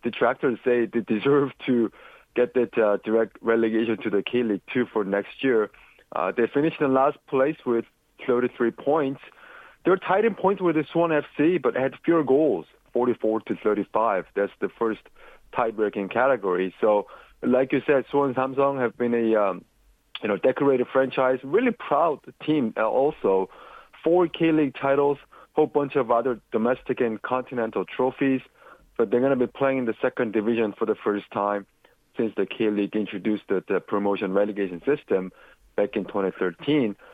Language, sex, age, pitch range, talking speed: English, male, 30-49, 110-140 Hz, 170 wpm